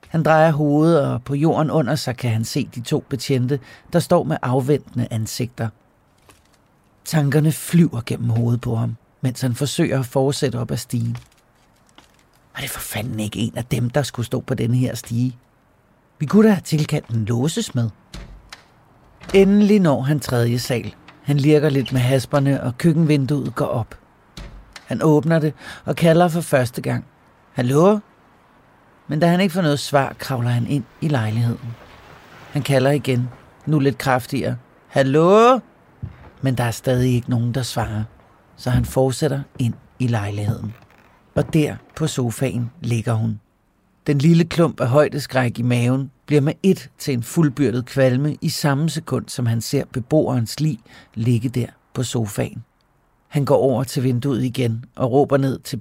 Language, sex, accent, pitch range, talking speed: Danish, male, native, 120-150 Hz, 165 wpm